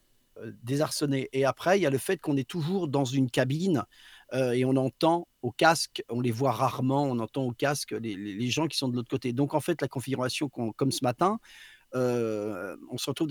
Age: 40-59